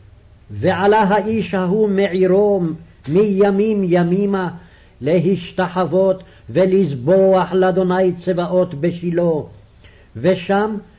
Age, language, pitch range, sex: 60-79, English, 150-190 Hz, male